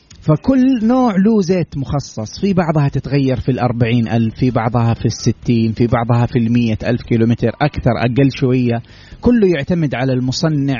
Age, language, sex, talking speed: 30-49, English, male, 155 wpm